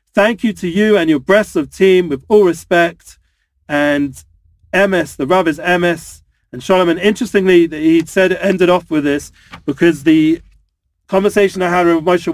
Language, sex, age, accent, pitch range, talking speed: English, male, 40-59, British, 150-190 Hz, 170 wpm